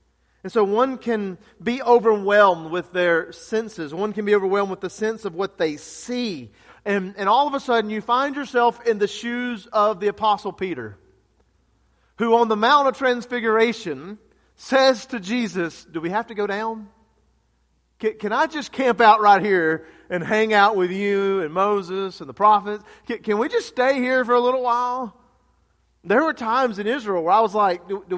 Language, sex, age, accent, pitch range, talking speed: English, male, 40-59, American, 175-235 Hz, 190 wpm